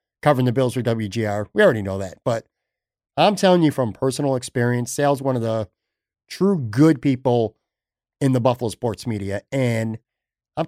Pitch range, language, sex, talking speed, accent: 115-155 Hz, English, male, 170 wpm, American